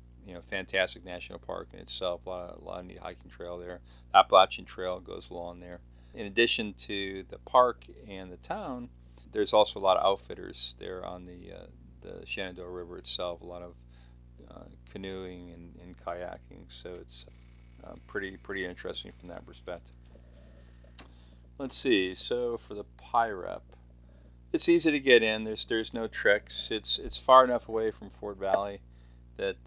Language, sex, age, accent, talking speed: English, male, 40-59, American, 170 wpm